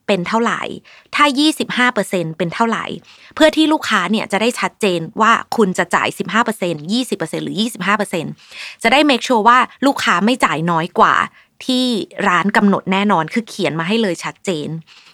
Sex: female